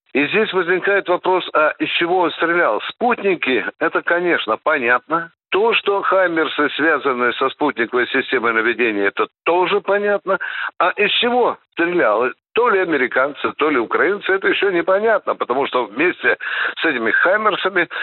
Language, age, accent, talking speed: Russian, 60-79, native, 150 wpm